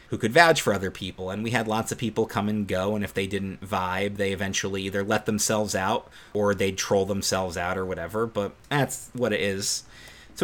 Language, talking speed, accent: English, 225 wpm, American